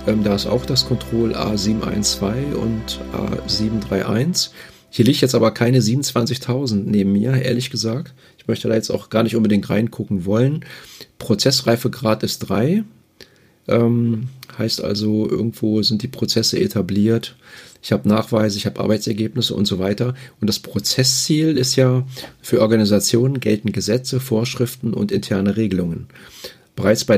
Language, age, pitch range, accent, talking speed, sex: German, 40-59, 105-125 Hz, German, 135 wpm, male